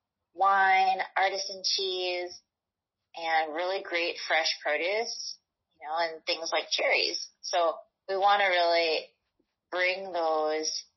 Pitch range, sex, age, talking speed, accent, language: 160-200 Hz, female, 30-49, 115 wpm, American, English